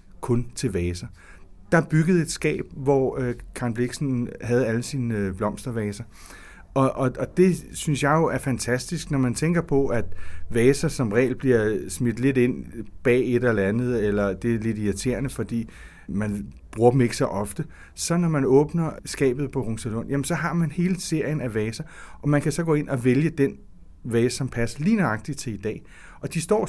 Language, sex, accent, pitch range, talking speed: Danish, male, native, 110-145 Hz, 195 wpm